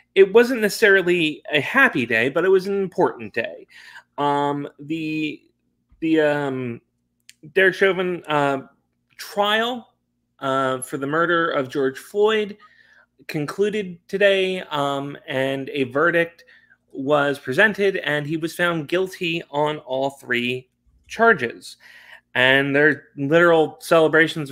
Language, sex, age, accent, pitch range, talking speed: English, male, 30-49, American, 135-200 Hz, 120 wpm